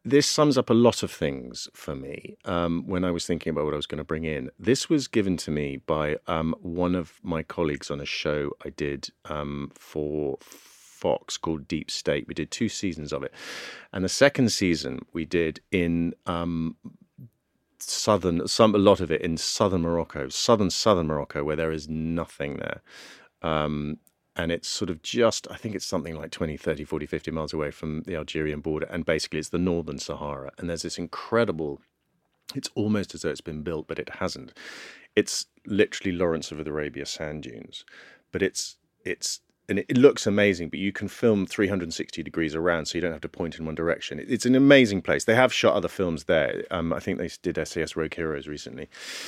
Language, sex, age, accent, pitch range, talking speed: English, male, 40-59, British, 75-95 Hz, 200 wpm